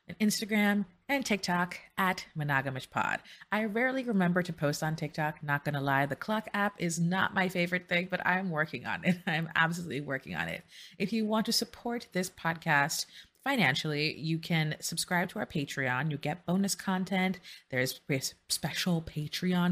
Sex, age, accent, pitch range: female, 30-49, American, 150-205 Hz